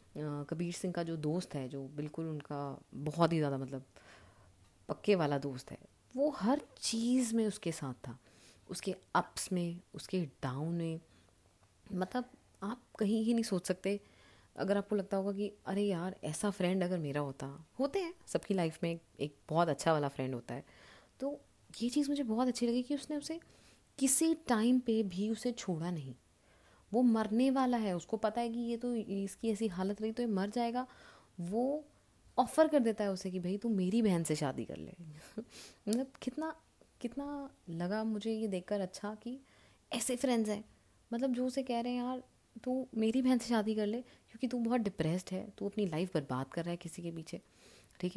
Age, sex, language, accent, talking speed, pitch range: 30-49, female, Hindi, native, 190 wpm, 155-235 Hz